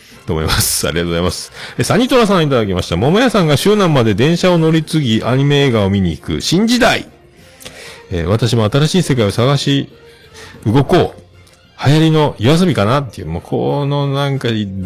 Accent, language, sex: native, Japanese, male